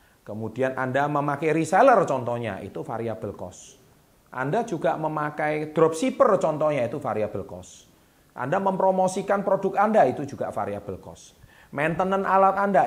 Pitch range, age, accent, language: 105-155 Hz, 30-49, native, Indonesian